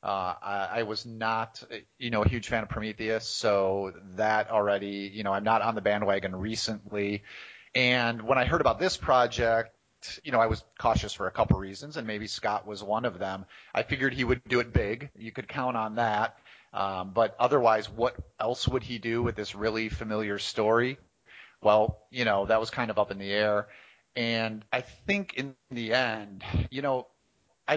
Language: English